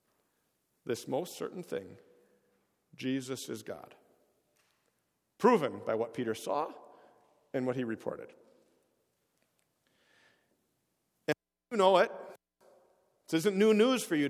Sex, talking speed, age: male, 110 wpm, 50-69